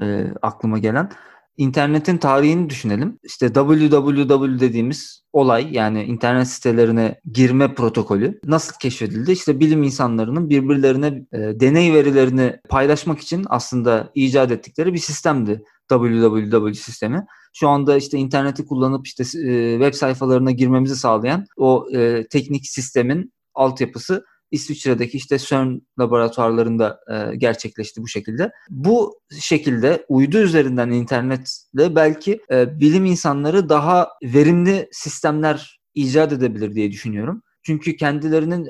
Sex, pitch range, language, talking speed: male, 125-150 Hz, Turkish, 115 wpm